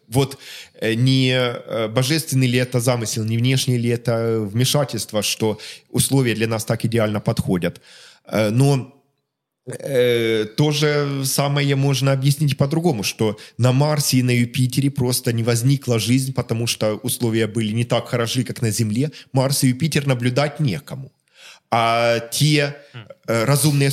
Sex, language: male, English